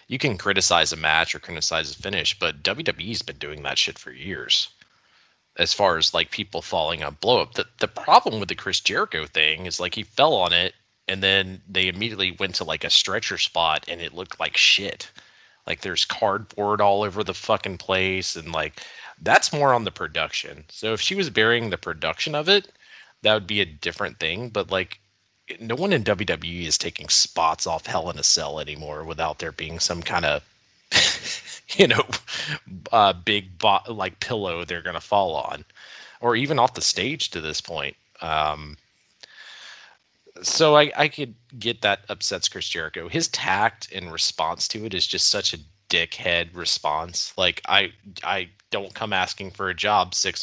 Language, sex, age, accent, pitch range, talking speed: English, male, 30-49, American, 80-105 Hz, 185 wpm